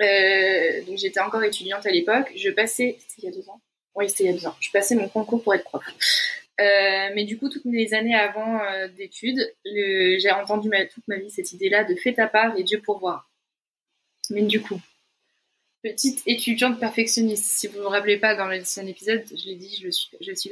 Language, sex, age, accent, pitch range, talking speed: French, female, 20-39, French, 195-230 Hz, 235 wpm